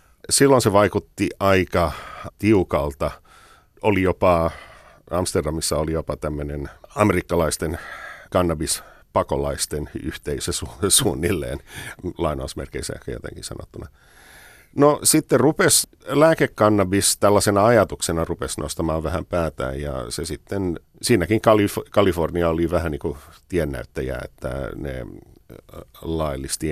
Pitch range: 75-95 Hz